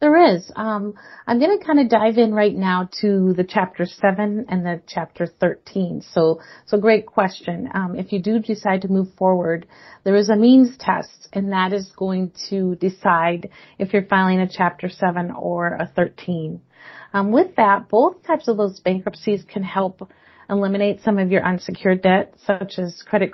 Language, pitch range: English, 185-220 Hz